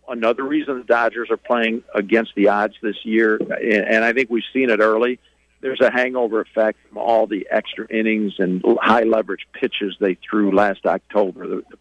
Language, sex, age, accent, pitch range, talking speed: English, male, 50-69, American, 105-120 Hz, 180 wpm